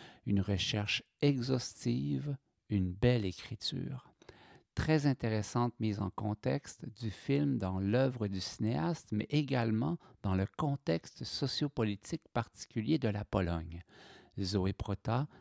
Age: 60-79